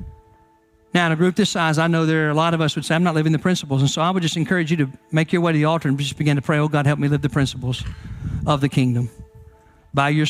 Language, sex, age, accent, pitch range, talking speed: English, male, 50-69, American, 150-215 Hz, 305 wpm